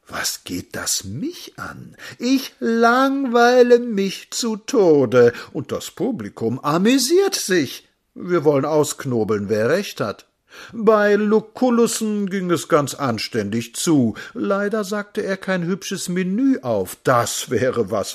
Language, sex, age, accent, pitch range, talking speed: German, male, 60-79, German, 135-230 Hz, 125 wpm